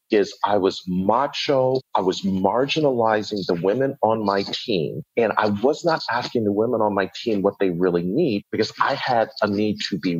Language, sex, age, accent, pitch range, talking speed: English, male, 40-59, American, 115-175 Hz, 195 wpm